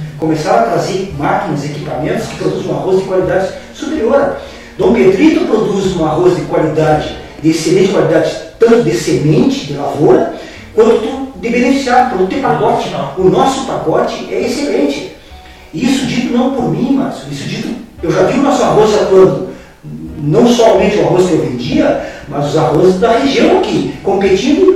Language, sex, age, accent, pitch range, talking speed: Portuguese, male, 40-59, Brazilian, 155-260 Hz, 160 wpm